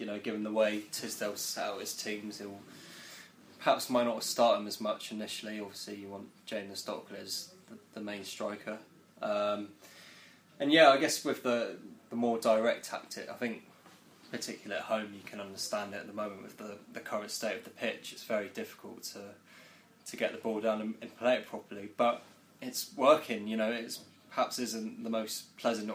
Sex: male